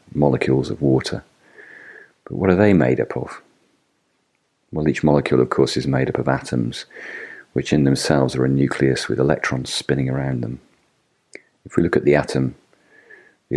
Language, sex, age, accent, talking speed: English, male, 40-59, British, 170 wpm